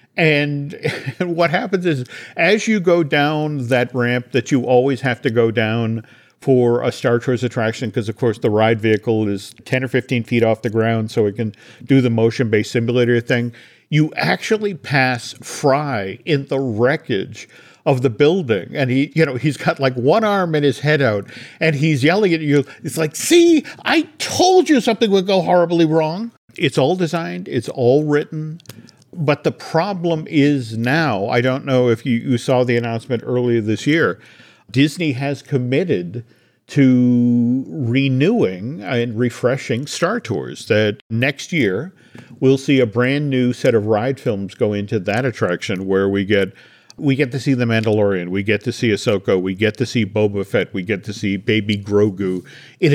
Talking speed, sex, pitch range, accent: 180 wpm, male, 115-150 Hz, American